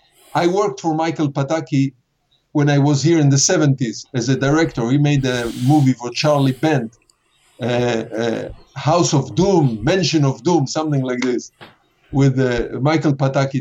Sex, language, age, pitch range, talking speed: male, German, 50-69, 135-165 Hz, 165 wpm